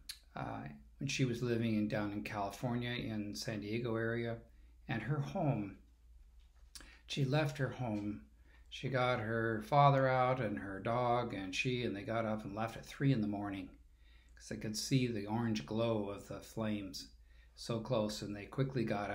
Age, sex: 50-69, male